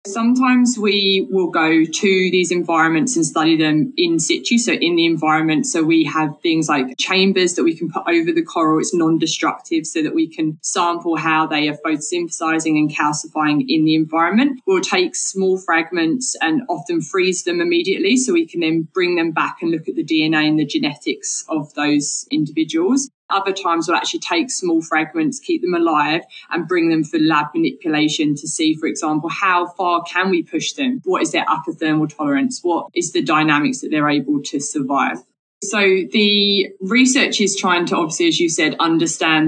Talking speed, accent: 190 wpm, British